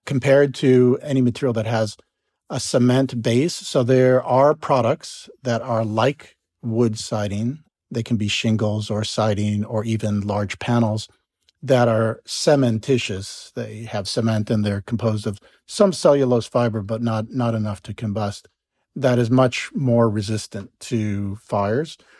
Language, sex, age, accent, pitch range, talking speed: English, male, 50-69, American, 110-135 Hz, 145 wpm